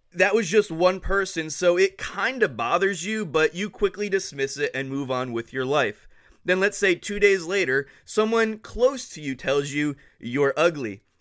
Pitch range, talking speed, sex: 145-195 Hz, 195 wpm, male